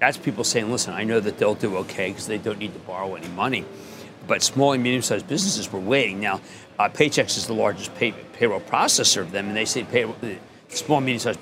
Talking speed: 225 wpm